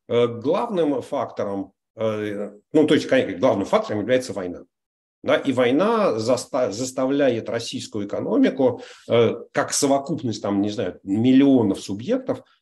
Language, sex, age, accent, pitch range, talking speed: Russian, male, 40-59, native, 115-145 Hz, 110 wpm